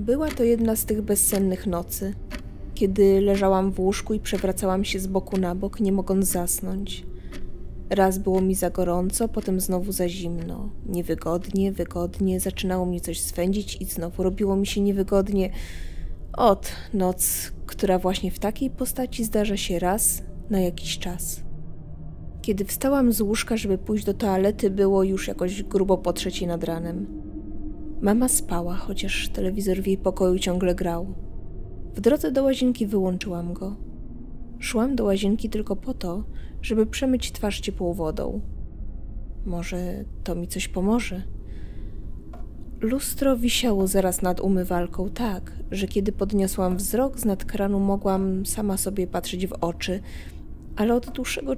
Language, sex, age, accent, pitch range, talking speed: Polish, female, 20-39, native, 175-205 Hz, 145 wpm